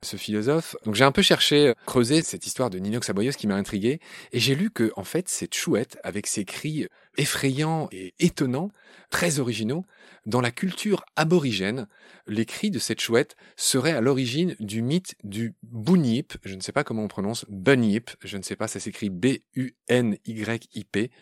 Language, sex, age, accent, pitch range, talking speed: French, male, 30-49, French, 105-145 Hz, 180 wpm